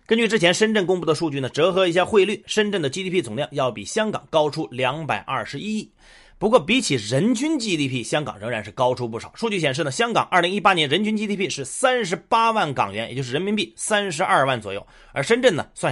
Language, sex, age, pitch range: Chinese, male, 30-49, 140-215 Hz